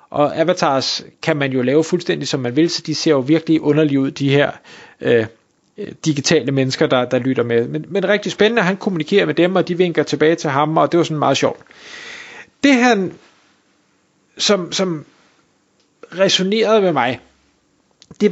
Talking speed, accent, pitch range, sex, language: 180 wpm, native, 150-195 Hz, male, Danish